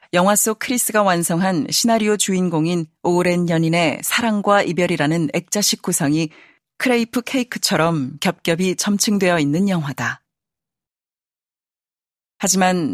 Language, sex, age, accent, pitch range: Korean, female, 40-59, native, 160-205 Hz